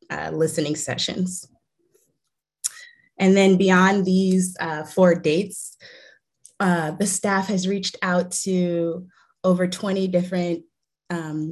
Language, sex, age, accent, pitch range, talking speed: English, female, 20-39, American, 165-195 Hz, 110 wpm